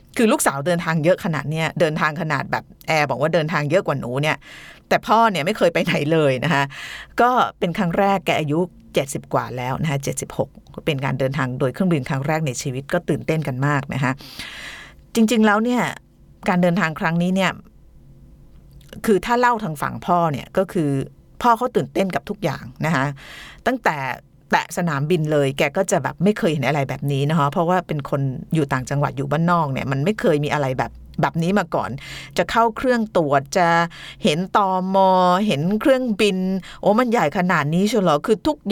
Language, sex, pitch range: Thai, female, 150-200 Hz